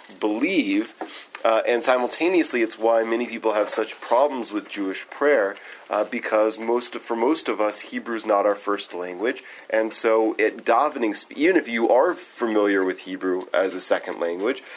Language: English